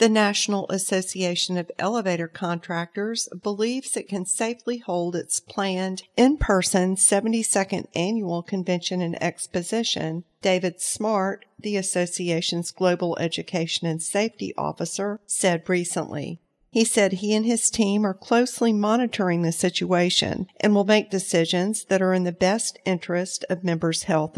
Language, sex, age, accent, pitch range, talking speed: English, female, 50-69, American, 170-210 Hz, 135 wpm